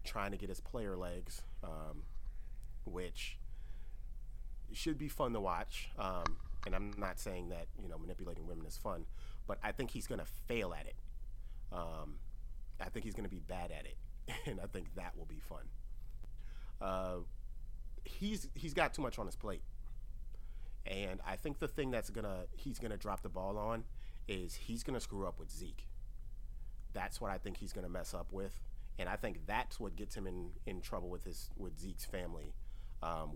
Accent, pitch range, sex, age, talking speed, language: American, 90-110 Hz, male, 30-49, 195 wpm, English